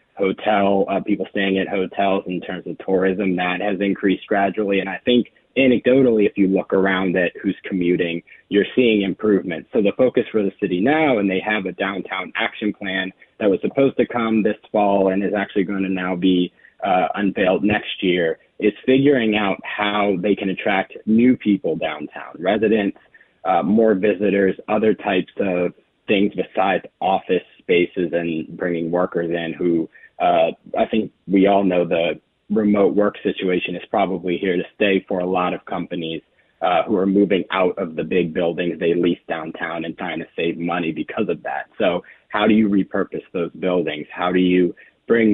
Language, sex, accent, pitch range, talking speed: English, male, American, 90-110 Hz, 180 wpm